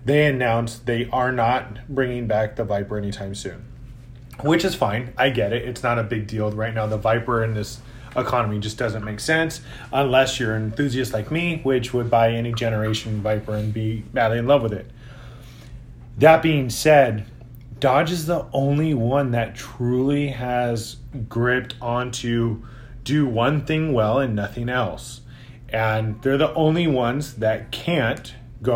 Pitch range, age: 115-135 Hz, 30-49